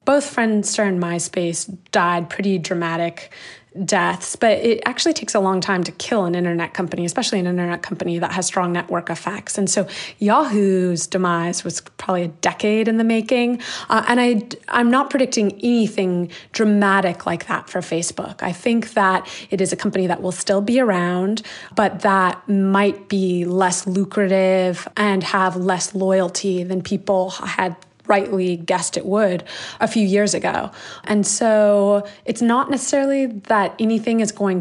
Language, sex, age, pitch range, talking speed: English, female, 20-39, 180-210 Hz, 160 wpm